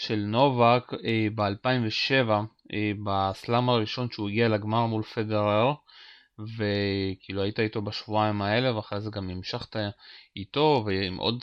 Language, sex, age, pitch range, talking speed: Hebrew, male, 30-49, 110-140 Hz, 115 wpm